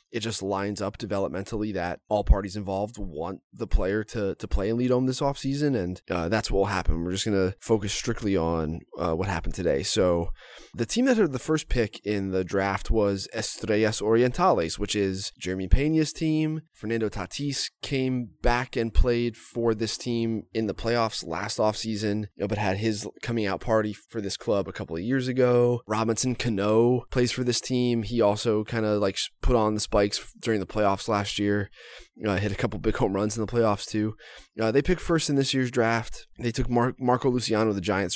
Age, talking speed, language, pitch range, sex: 20-39, 205 wpm, English, 100-120 Hz, male